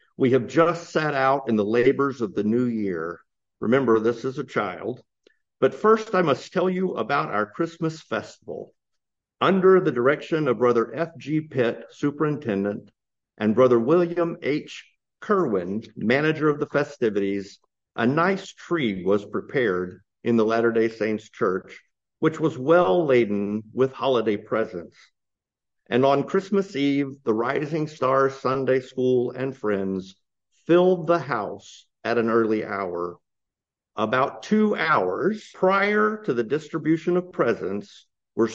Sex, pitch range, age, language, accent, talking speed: male, 115-160 Hz, 50-69, English, American, 135 wpm